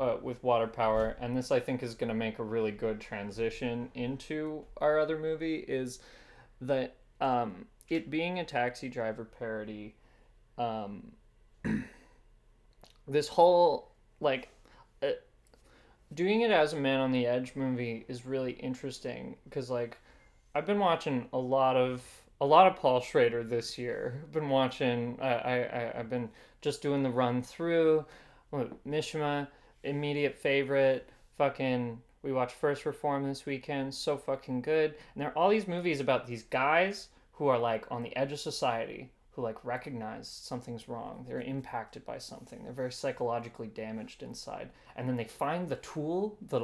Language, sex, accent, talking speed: English, male, American, 160 wpm